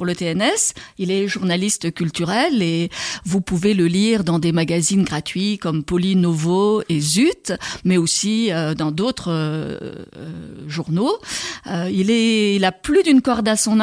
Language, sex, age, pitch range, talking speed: French, female, 50-69, 175-225 Hz, 155 wpm